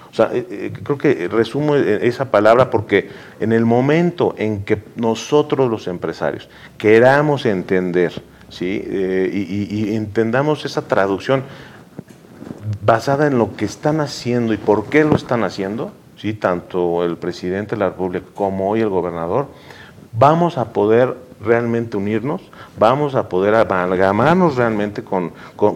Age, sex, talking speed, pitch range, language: 40-59, male, 140 wpm, 95-135 Hz, Spanish